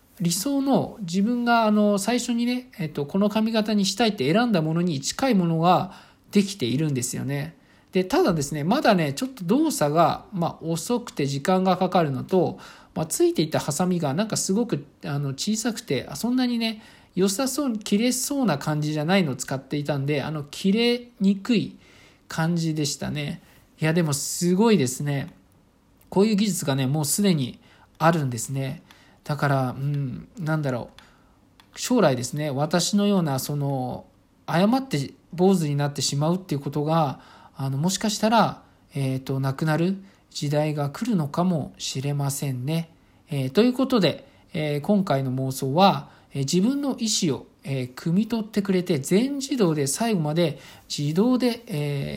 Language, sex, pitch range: Japanese, male, 140-205 Hz